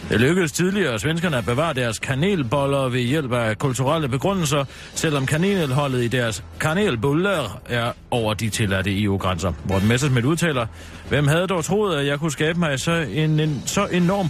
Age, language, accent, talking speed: 40-59, Danish, native, 170 wpm